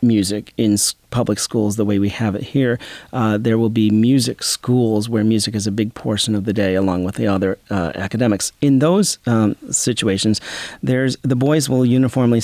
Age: 40-59